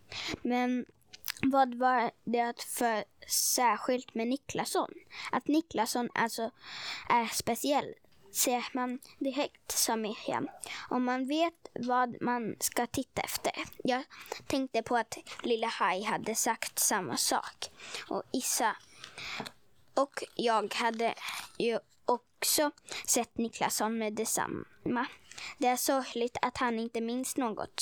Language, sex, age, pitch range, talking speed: Swedish, female, 20-39, 230-275 Hz, 120 wpm